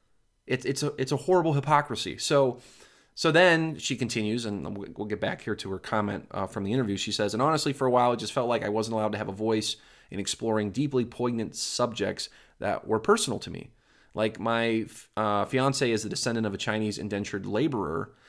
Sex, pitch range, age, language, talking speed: male, 105-125 Hz, 20-39, English, 205 wpm